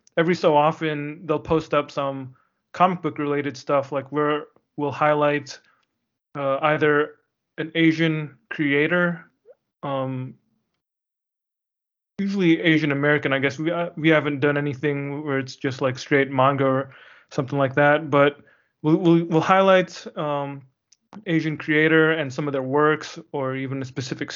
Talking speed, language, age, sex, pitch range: 145 wpm, English, 20-39, male, 135-160 Hz